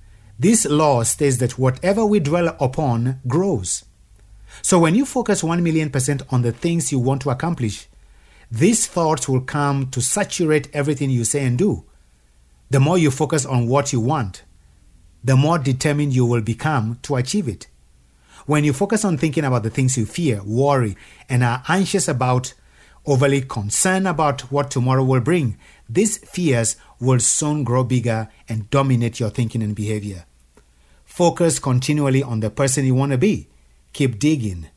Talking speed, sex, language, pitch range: 165 wpm, male, English, 105-150 Hz